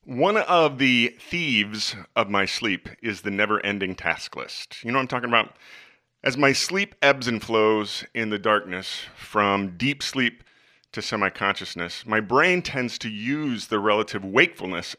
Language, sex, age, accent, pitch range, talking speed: English, male, 30-49, American, 100-135 Hz, 160 wpm